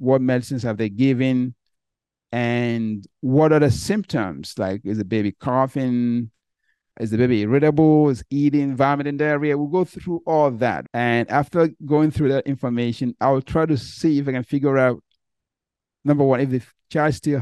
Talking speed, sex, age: 170 wpm, male, 50-69